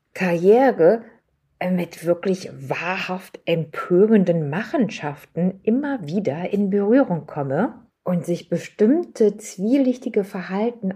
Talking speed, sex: 90 wpm, female